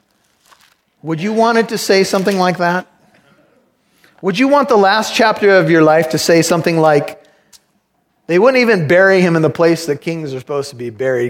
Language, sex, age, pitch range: English, male, 30-49, 160-210 Hz